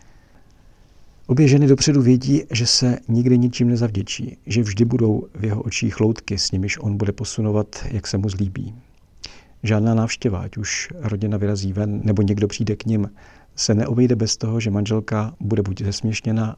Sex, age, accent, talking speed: male, 50-69, native, 165 wpm